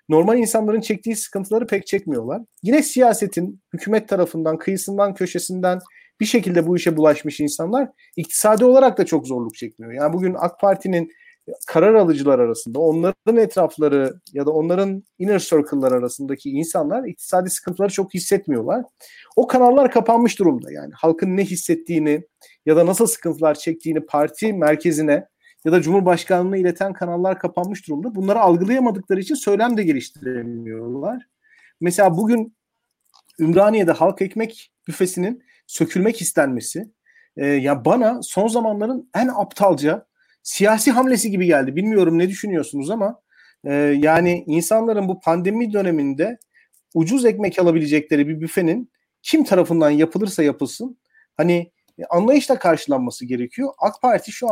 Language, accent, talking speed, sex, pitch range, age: Turkish, native, 130 wpm, male, 160-225 Hz, 40-59